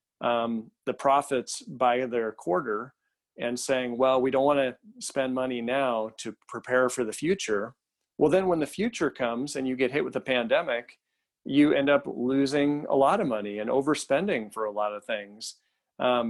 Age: 40-59